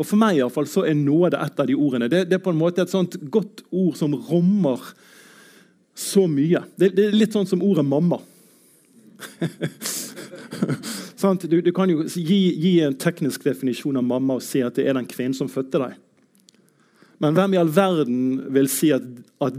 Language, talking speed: English, 210 wpm